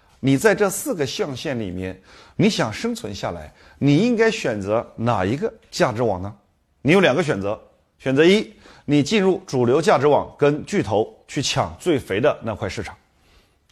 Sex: male